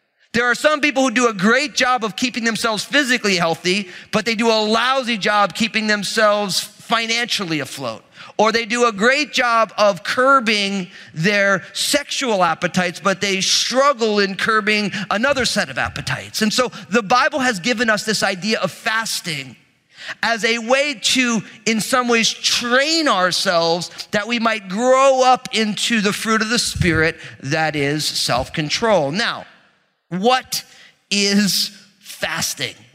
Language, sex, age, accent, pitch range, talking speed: English, male, 30-49, American, 175-240 Hz, 150 wpm